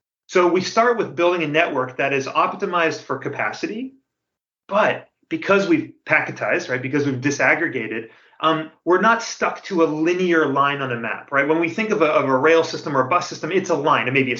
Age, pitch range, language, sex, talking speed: 30-49, 135-170 Hz, English, male, 215 wpm